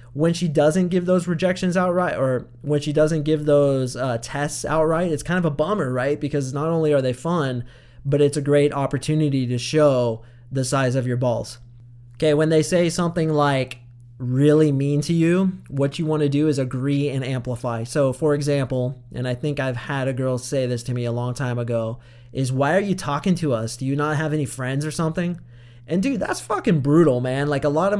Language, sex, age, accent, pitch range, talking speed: English, male, 20-39, American, 125-155 Hz, 220 wpm